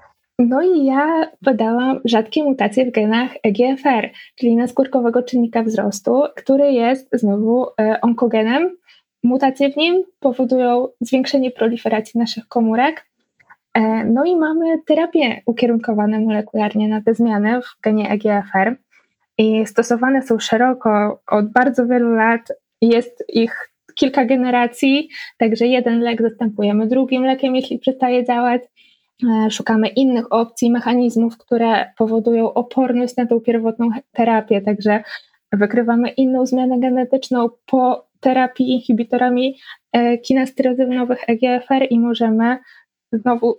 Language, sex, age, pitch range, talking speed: Polish, female, 20-39, 230-265 Hz, 115 wpm